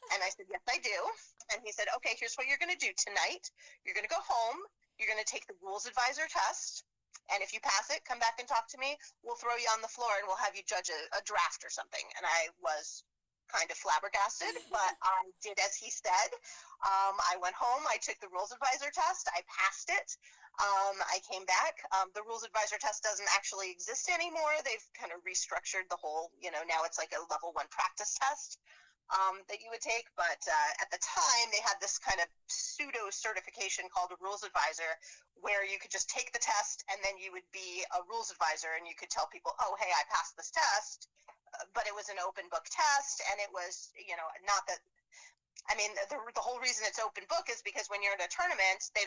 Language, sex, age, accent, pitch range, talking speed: English, female, 30-49, American, 190-250 Hz, 230 wpm